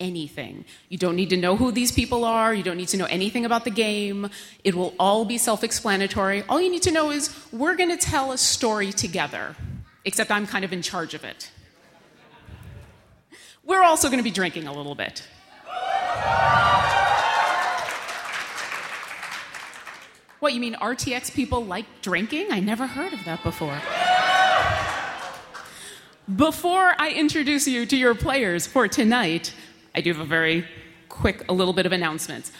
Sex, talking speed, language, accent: female, 155 wpm, English, American